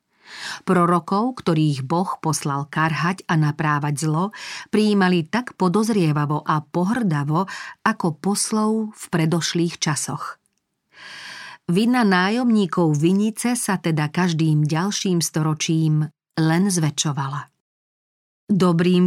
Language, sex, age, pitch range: Slovak, female, 40-59, 160-200 Hz